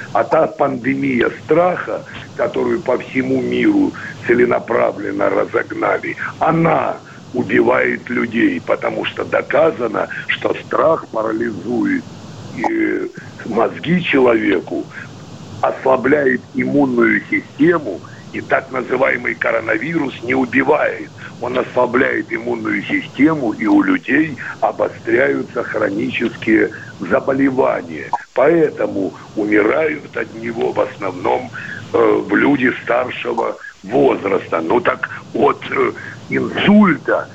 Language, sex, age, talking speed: Russian, male, 60-79, 90 wpm